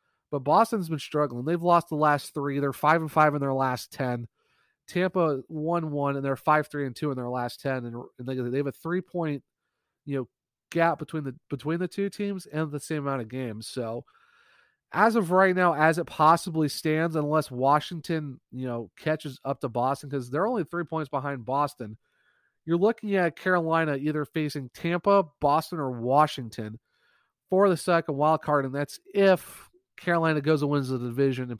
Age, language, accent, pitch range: 30-49, English, American, 135-170 Hz